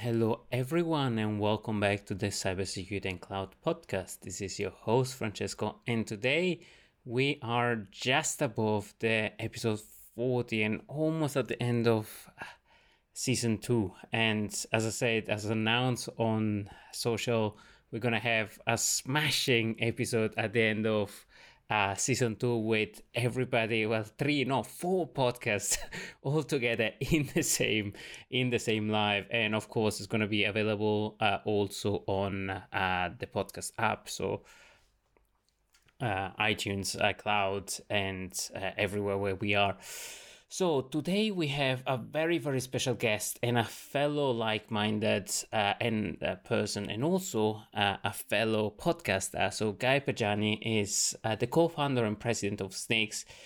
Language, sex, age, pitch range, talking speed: English, male, 20-39, 105-125 Hz, 145 wpm